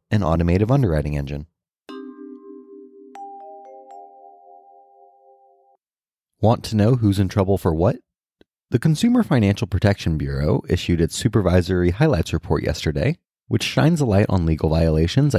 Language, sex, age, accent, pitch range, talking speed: English, male, 30-49, American, 80-125 Hz, 115 wpm